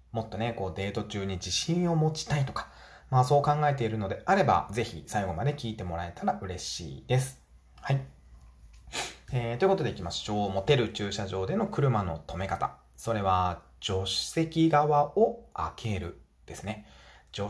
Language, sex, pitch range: Japanese, male, 95-145 Hz